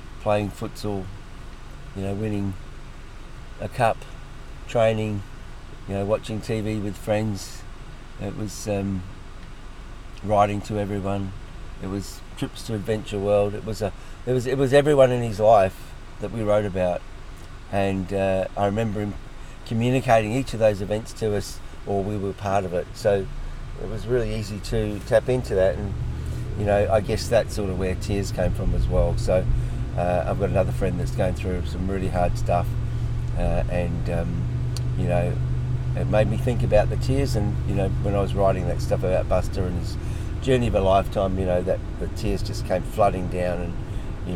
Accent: Australian